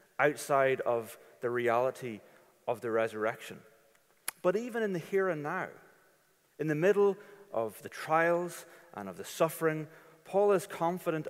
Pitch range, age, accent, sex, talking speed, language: 130-170 Hz, 30-49, British, male, 145 wpm, English